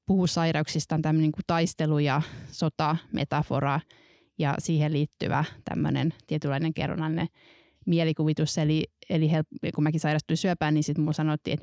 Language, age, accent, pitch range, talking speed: Finnish, 20-39, native, 155-165 Hz, 135 wpm